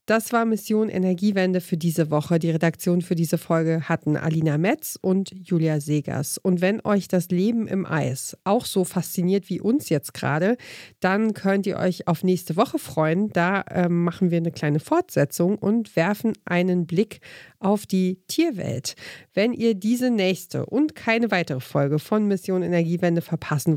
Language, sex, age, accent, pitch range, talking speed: German, female, 40-59, German, 165-200 Hz, 165 wpm